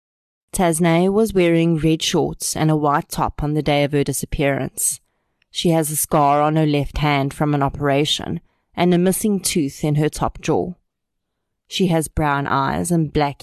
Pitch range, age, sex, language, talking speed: 150-180 Hz, 30-49, female, English, 180 wpm